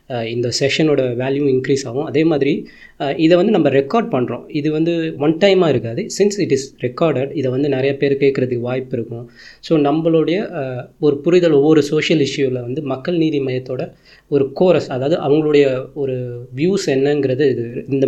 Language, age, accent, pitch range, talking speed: Tamil, 20-39, native, 125-145 Hz, 160 wpm